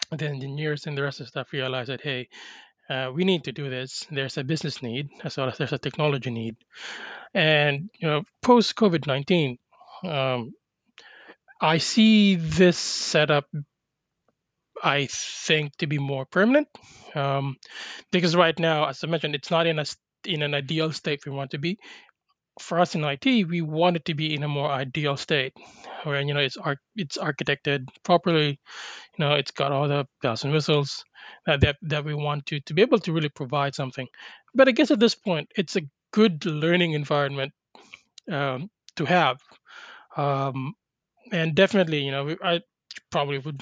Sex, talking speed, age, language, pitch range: male, 180 wpm, 20-39, English, 140-175 Hz